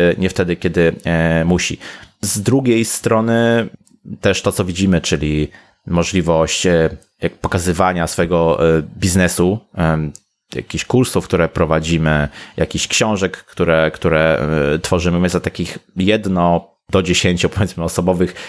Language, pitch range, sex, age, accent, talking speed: Polish, 85-115 Hz, male, 30-49, native, 105 wpm